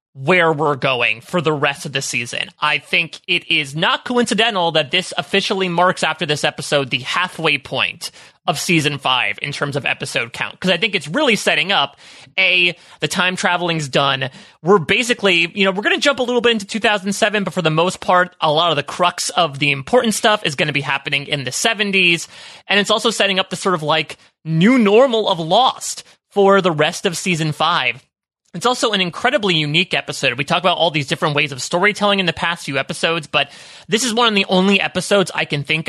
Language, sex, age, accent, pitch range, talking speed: English, male, 30-49, American, 145-195 Hz, 215 wpm